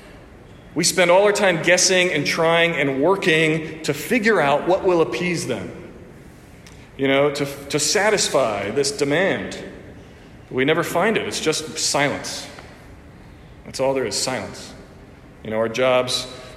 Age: 40-59